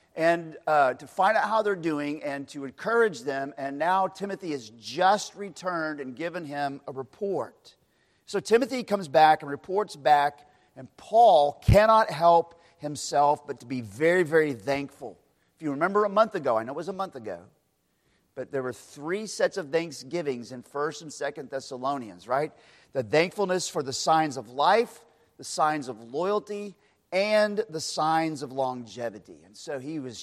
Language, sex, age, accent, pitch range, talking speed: English, male, 40-59, American, 135-190 Hz, 175 wpm